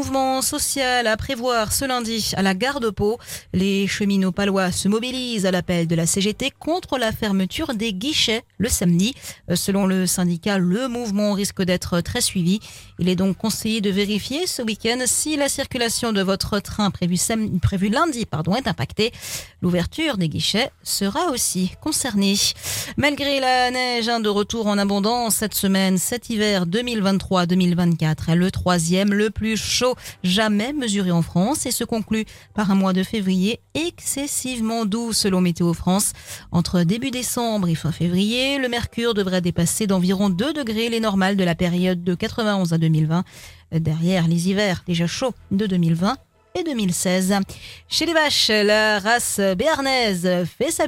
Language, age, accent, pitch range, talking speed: French, 40-59, French, 185-240 Hz, 165 wpm